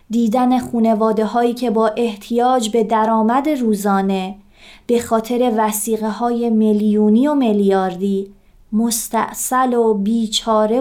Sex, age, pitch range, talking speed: female, 30-49, 205-235 Hz, 105 wpm